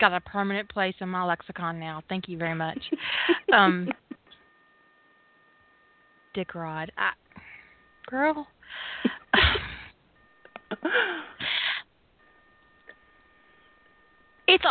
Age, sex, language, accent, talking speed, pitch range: 20-39, female, English, American, 80 wpm, 185-240 Hz